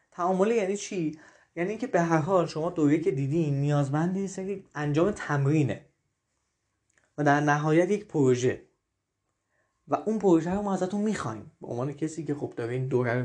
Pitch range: 145-195 Hz